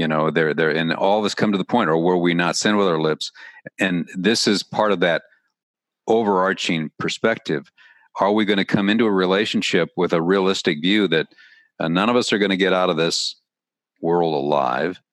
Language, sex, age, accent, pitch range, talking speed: English, male, 50-69, American, 85-95 Hz, 215 wpm